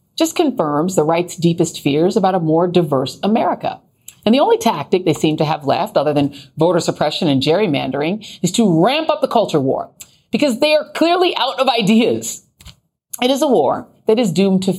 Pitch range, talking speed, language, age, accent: 165-255 Hz, 195 wpm, English, 40-59, American